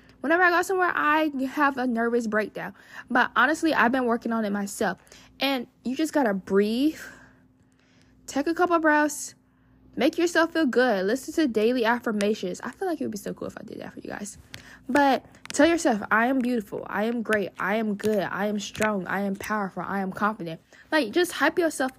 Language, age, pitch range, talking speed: English, 10-29, 195-275 Hz, 205 wpm